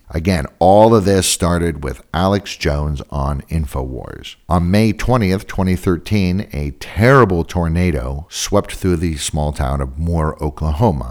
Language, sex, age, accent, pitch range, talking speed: English, male, 50-69, American, 75-100 Hz, 135 wpm